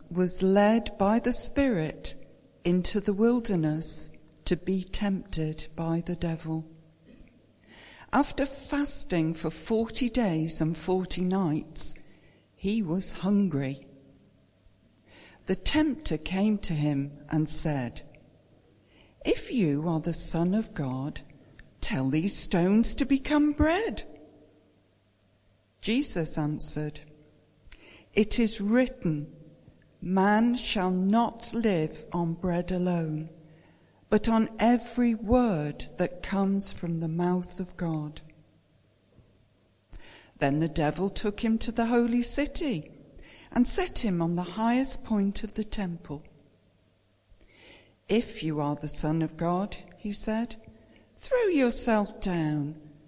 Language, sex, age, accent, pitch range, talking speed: English, female, 60-79, British, 150-220 Hz, 110 wpm